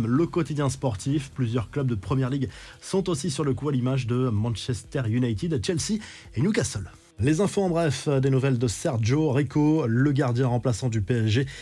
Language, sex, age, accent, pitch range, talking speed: French, male, 20-39, French, 130-160 Hz, 180 wpm